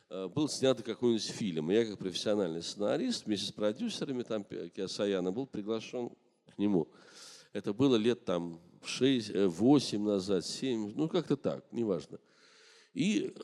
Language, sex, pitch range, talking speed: Russian, male, 100-145 Hz, 130 wpm